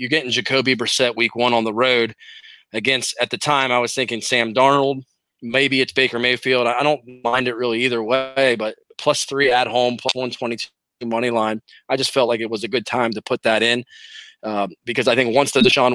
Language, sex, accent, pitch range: English, male, American, 115-135 Hz